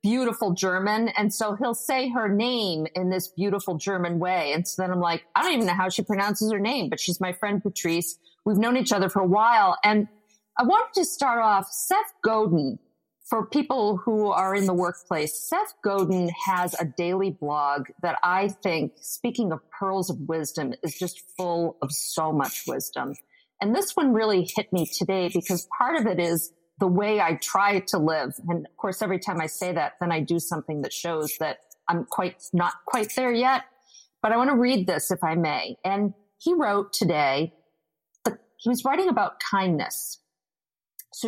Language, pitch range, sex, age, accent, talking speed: English, 170-225 Hz, female, 40-59, American, 195 wpm